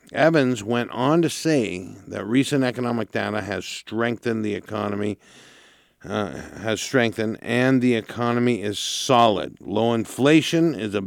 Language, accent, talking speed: English, American, 135 wpm